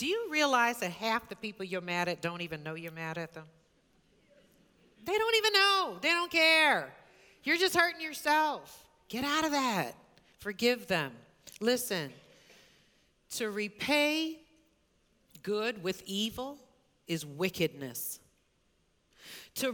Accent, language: American, English